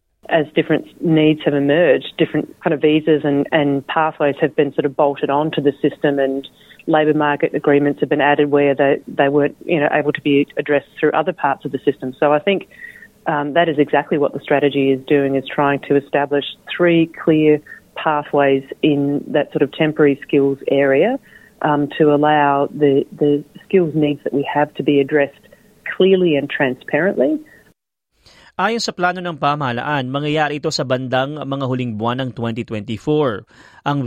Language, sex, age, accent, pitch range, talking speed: Filipino, female, 40-59, Australian, 140-160 Hz, 175 wpm